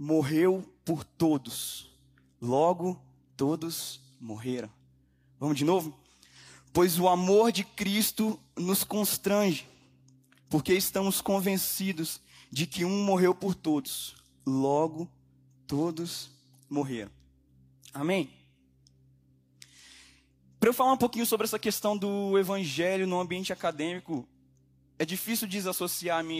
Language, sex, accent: Portuguese, male, Brazilian